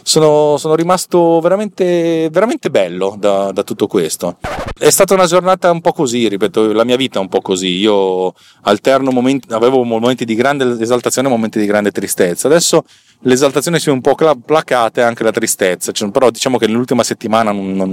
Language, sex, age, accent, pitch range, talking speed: Italian, male, 30-49, native, 105-135 Hz, 185 wpm